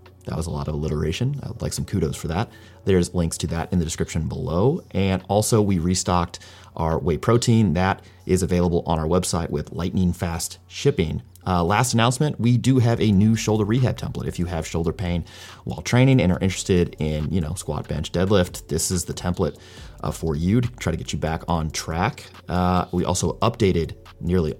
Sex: male